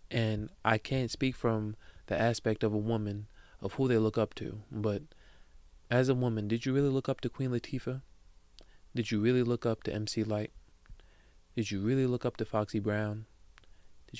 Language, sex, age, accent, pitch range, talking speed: English, male, 20-39, American, 105-125 Hz, 190 wpm